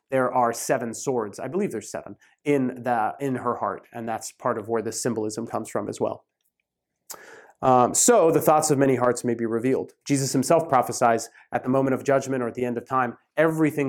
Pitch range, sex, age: 125-170 Hz, male, 30-49